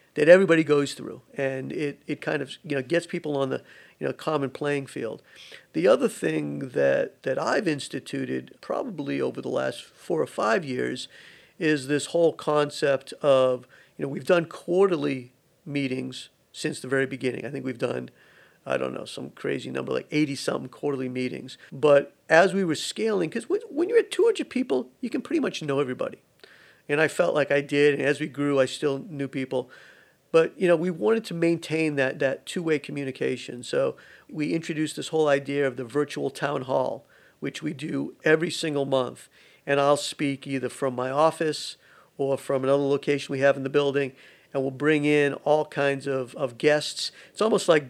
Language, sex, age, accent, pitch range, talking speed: English, male, 50-69, American, 135-155 Hz, 190 wpm